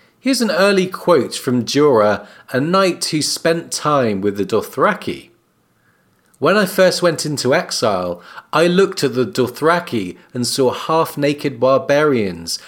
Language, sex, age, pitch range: English, male, 40-59, 125-180 Hz